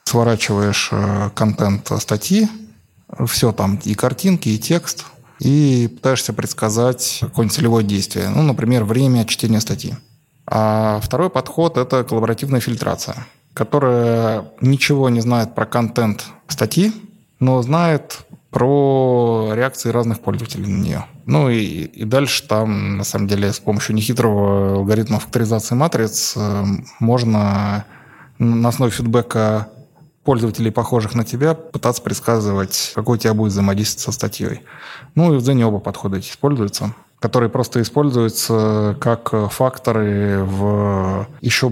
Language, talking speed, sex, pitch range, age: Russian, 125 wpm, male, 105-130 Hz, 20-39